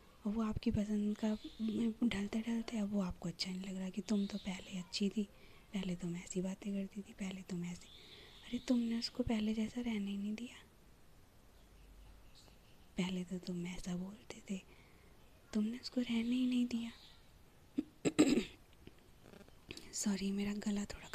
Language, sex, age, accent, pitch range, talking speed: Hindi, female, 20-39, native, 200-230 Hz, 155 wpm